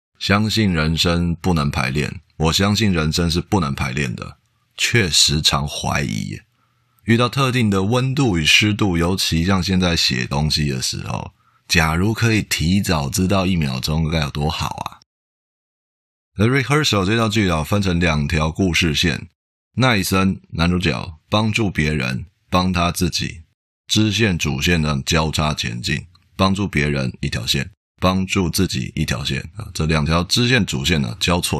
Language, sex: Chinese, male